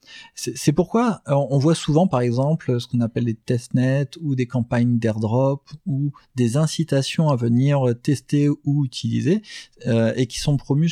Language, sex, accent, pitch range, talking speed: French, male, French, 120-150 Hz, 165 wpm